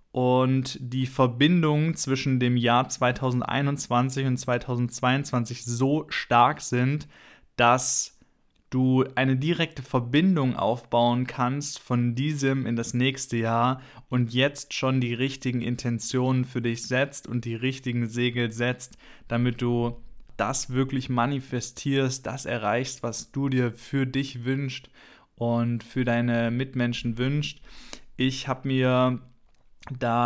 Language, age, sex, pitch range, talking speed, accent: German, 20-39, male, 120-140 Hz, 120 wpm, German